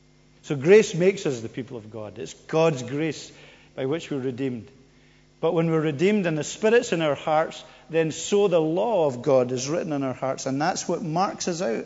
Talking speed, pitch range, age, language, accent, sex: 215 wpm, 155-215 Hz, 50-69, English, British, male